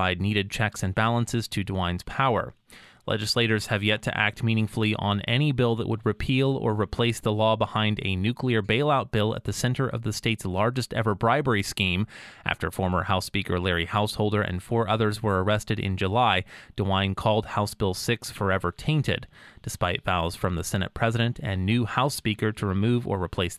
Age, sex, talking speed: 30-49, male, 185 wpm